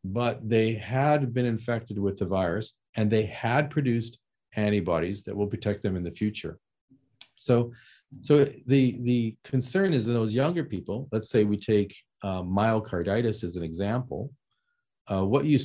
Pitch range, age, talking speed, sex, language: 100-135 Hz, 40-59, 160 wpm, male, English